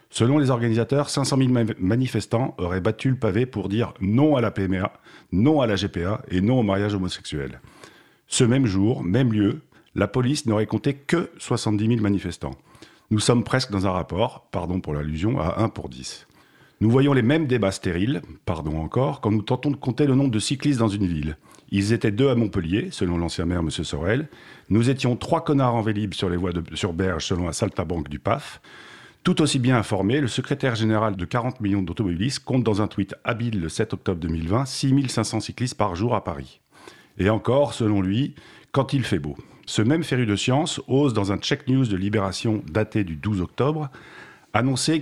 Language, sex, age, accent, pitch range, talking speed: French, male, 50-69, French, 95-130 Hz, 200 wpm